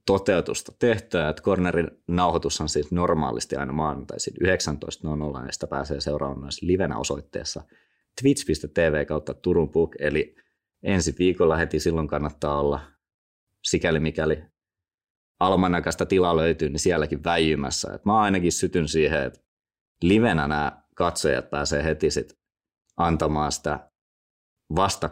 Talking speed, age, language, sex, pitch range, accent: 120 wpm, 30-49, Finnish, male, 75-95 Hz, native